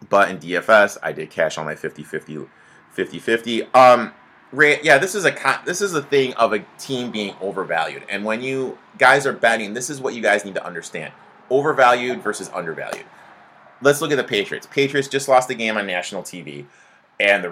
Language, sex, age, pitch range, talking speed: English, male, 30-49, 105-140 Hz, 180 wpm